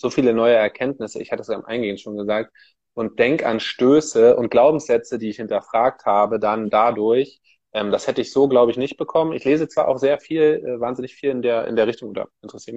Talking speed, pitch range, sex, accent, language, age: 230 wpm, 110-130 Hz, male, German, German, 20-39